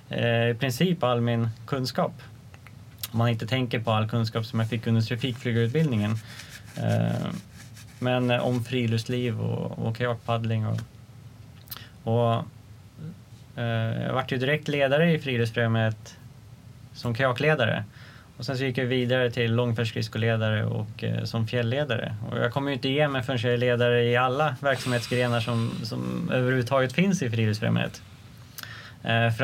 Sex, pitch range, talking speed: male, 115-130 Hz, 120 wpm